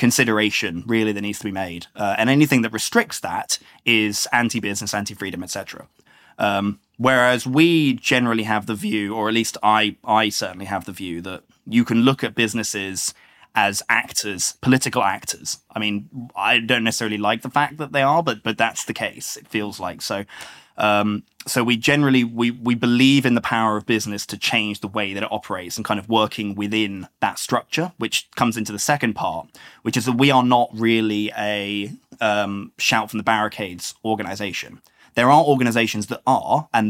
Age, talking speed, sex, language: 20-39, 185 wpm, male, English